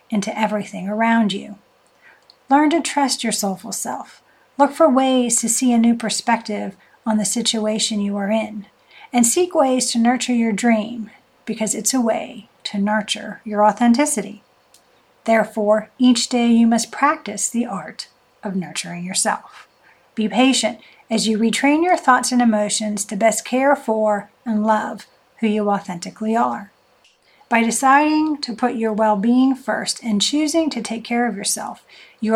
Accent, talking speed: American, 155 wpm